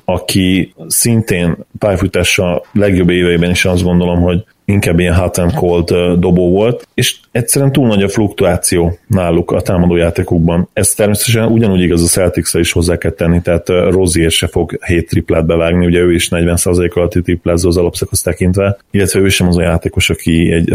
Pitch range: 85-100 Hz